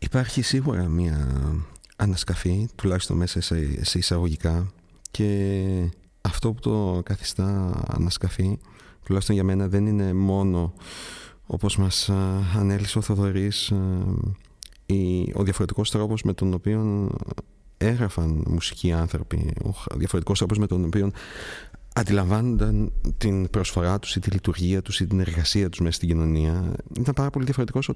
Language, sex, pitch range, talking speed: Greek, male, 90-110 Hz, 130 wpm